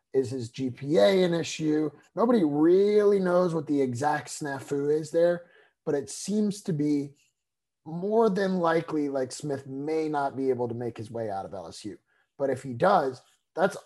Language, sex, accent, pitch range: English, male, American, 135-165 Hz